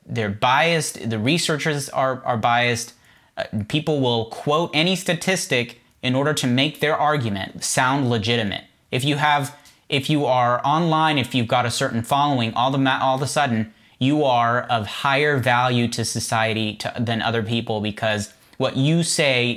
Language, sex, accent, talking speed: English, male, American, 170 wpm